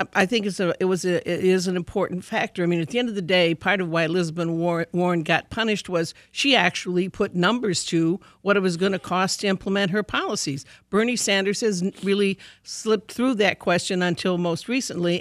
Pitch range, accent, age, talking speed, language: 175-205 Hz, American, 60-79, 215 wpm, English